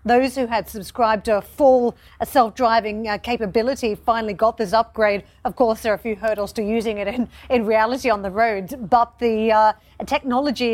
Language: English